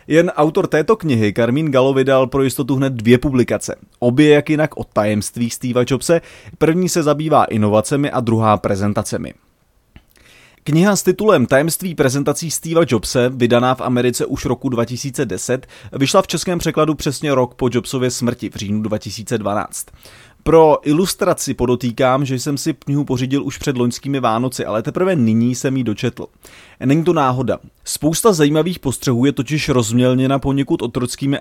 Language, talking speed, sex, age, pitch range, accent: Czech, 155 wpm, male, 30-49, 120-150 Hz, native